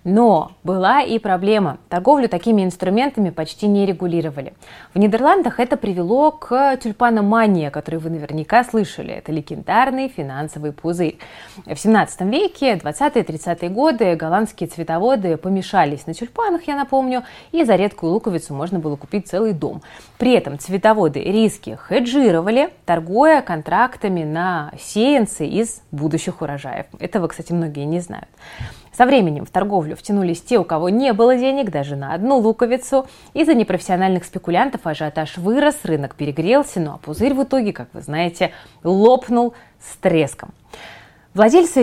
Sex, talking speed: female, 140 wpm